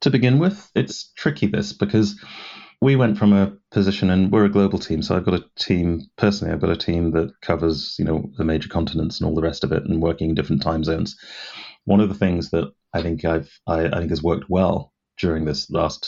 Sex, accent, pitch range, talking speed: male, British, 80-95 Hz, 230 wpm